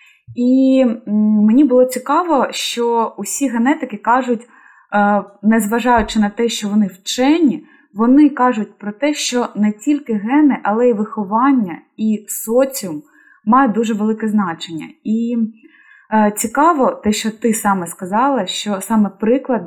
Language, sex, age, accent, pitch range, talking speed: Ukrainian, female, 20-39, native, 210-250 Hz, 125 wpm